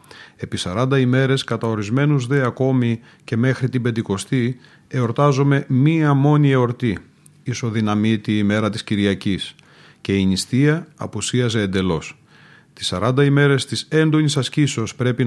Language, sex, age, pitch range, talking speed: Greek, male, 40-59, 110-140 Hz, 120 wpm